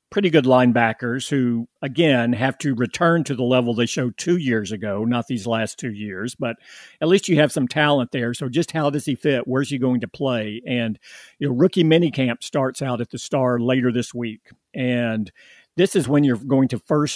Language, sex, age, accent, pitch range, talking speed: English, male, 50-69, American, 120-145 Hz, 215 wpm